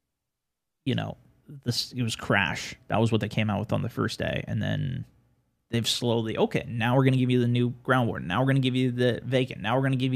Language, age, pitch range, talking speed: English, 20-39, 120-140 Hz, 265 wpm